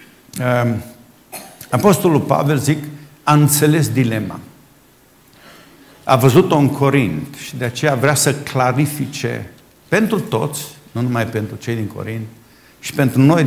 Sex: male